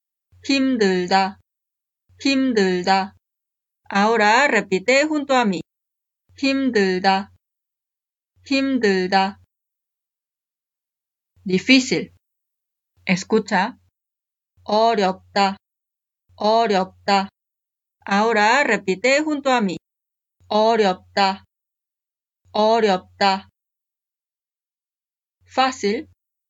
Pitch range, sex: 185-230 Hz, female